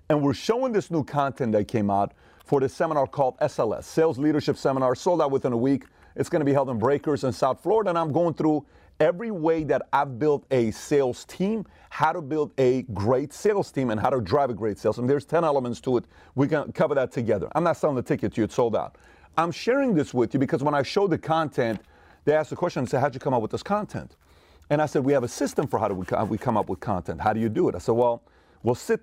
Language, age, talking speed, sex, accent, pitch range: English, 40-59, 265 wpm, male, American, 115-155 Hz